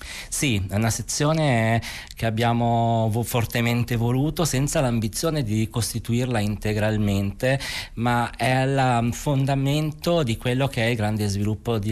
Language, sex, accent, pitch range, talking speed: Italian, male, native, 100-120 Hz, 130 wpm